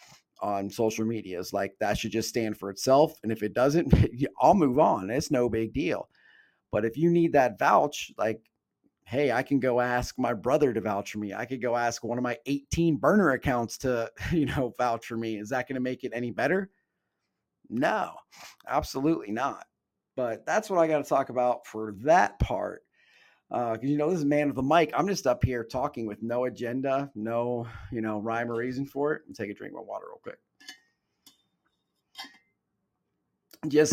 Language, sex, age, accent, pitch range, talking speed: English, male, 40-59, American, 120-150 Hz, 195 wpm